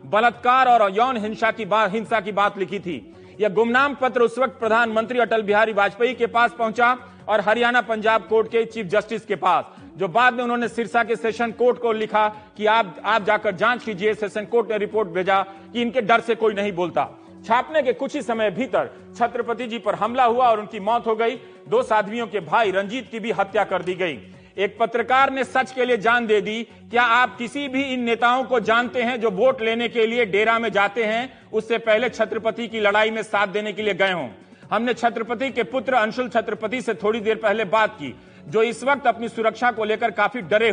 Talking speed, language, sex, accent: 215 wpm, Hindi, male, native